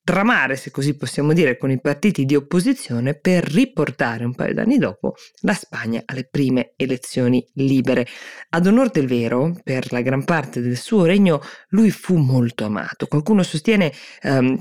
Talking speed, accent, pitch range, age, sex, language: 165 wpm, native, 130-160 Hz, 20-39, female, Italian